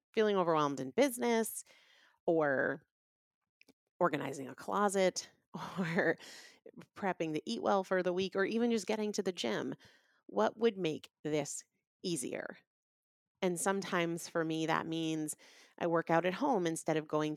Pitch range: 160-195 Hz